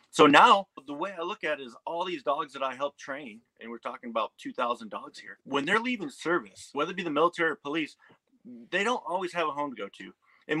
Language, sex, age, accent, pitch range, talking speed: English, male, 30-49, American, 120-170 Hz, 250 wpm